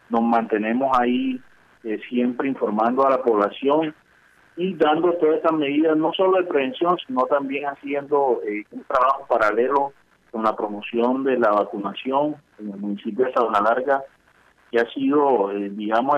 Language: Spanish